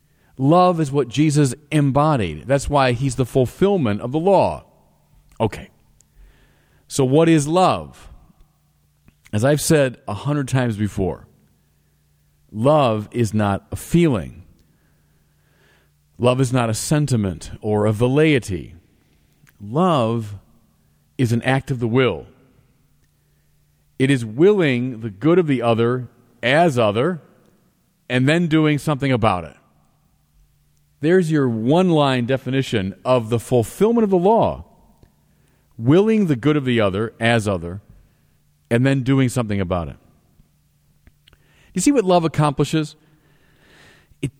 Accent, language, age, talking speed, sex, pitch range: American, English, 40-59, 125 wpm, male, 110-150 Hz